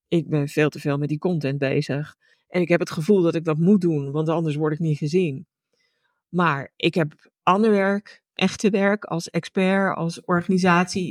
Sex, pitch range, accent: female, 165-210 Hz, Dutch